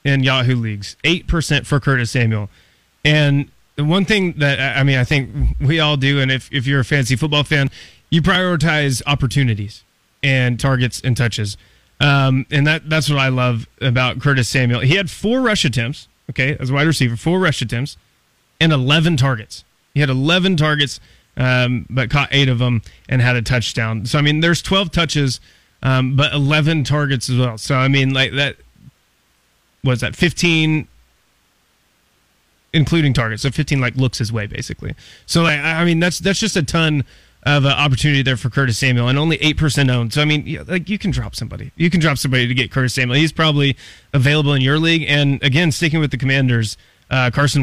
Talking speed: 195 wpm